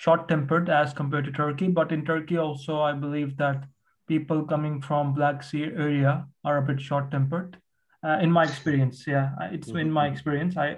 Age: 20-39